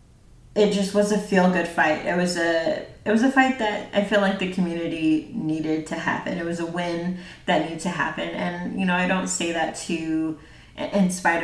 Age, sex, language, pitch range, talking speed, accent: 30-49, female, English, 160-185 Hz, 210 wpm, American